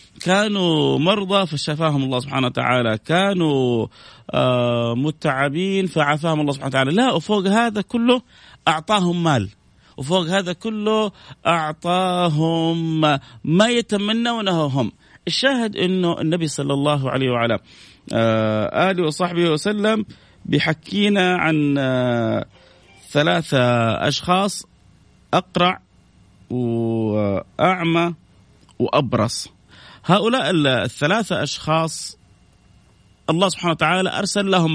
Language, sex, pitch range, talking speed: Arabic, male, 135-200 Hz, 95 wpm